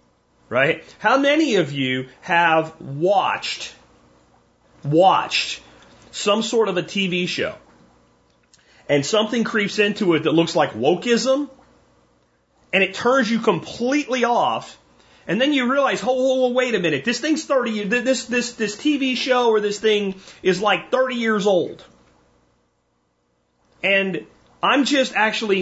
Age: 30-49